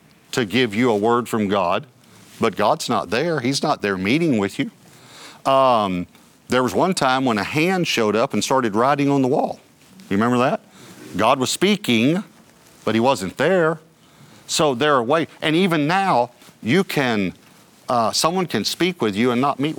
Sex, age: male, 50-69